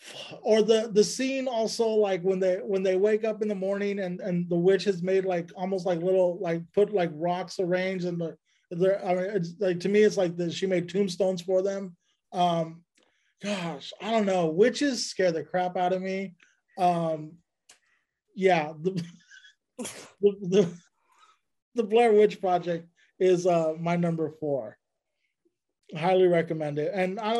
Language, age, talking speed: English, 20-39, 170 wpm